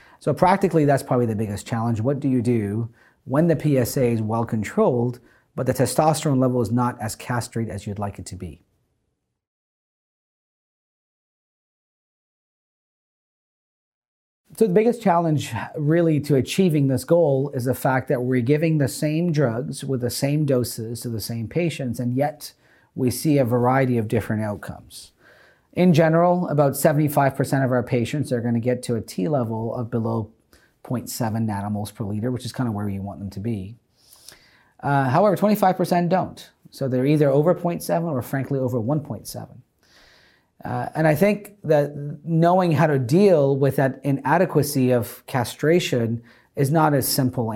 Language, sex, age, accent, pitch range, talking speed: English, male, 40-59, American, 120-155 Hz, 160 wpm